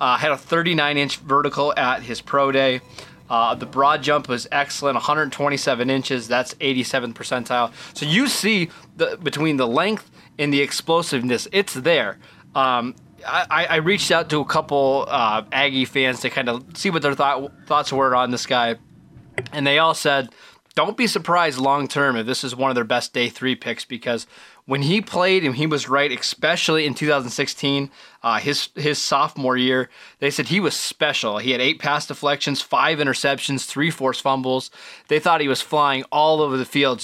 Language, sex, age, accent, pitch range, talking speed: English, male, 20-39, American, 130-155 Hz, 185 wpm